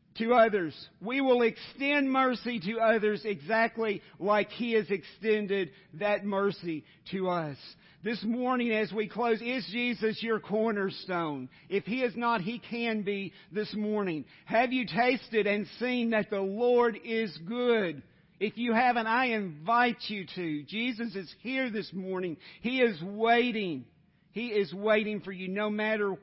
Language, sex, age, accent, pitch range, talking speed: English, male, 50-69, American, 180-225 Hz, 155 wpm